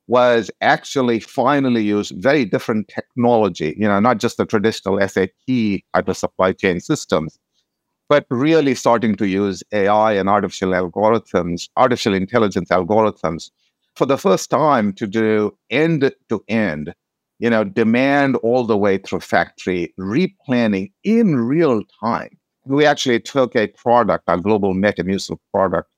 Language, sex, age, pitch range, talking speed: English, male, 60-79, 100-125 Hz, 140 wpm